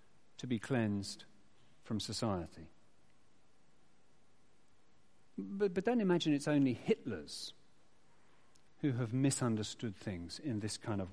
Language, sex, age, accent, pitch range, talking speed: English, male, 40-59, British, 110-140 Hz, 110 wpm